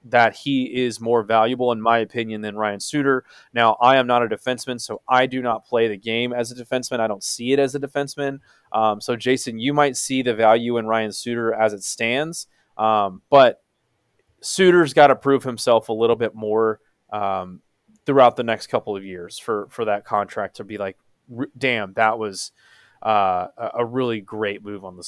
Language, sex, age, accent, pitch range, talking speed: English, male, 20-39, American, 110-130 Hz, 200 wpm